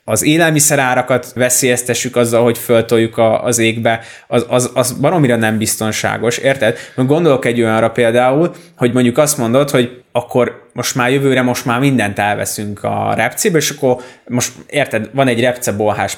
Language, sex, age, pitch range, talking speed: Hungarian, male, 20-39, 115-150 Hz, 150 wpm